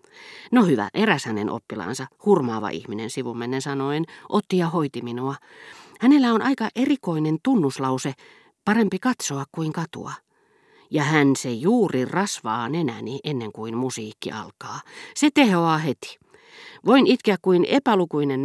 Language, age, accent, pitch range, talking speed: Finnish, 40-59, native, 125-205 Hz, 130 wpm